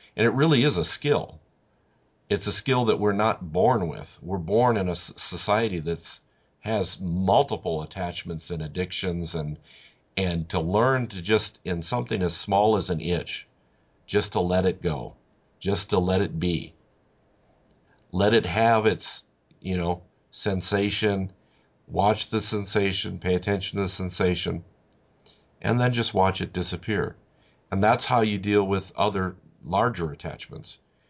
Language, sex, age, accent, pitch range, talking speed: English, male, 50-69, American, 90-110 Hz, 150 wpm